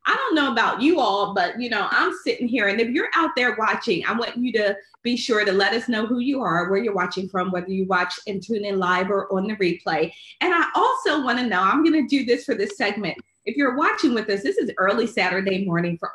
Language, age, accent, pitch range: English, 30-49, American, 205-300 Hz